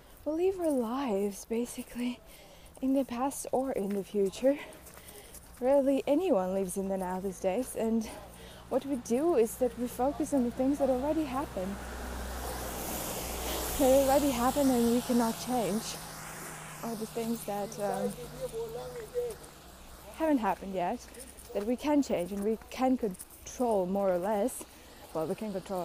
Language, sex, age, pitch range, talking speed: English, female, 20-39, 195-275 Hz, 150 wpm